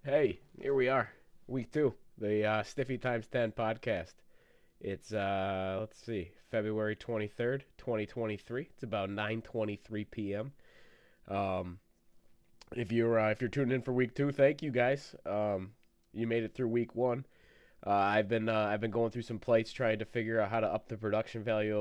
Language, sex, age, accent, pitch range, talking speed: English, male, 20-39, American, 100-120 Hz, 190 wpm